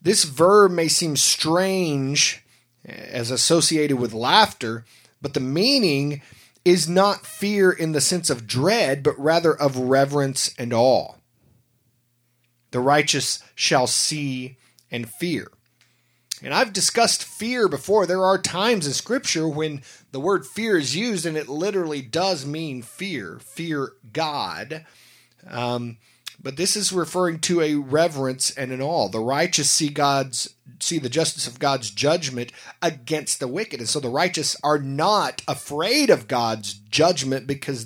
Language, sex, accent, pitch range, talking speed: English, male, American, 120-160 Hz, 145 wpm